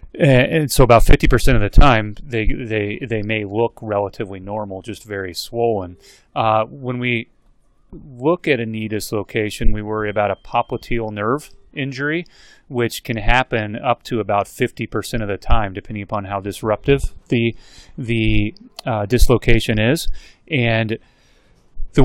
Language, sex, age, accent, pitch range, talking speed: English, male, 30-49, American, 105-125 Hz, 145 wpm